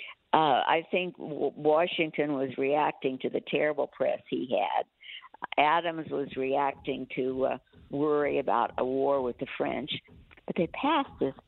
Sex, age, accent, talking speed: female, 60-79, American, 145 wpm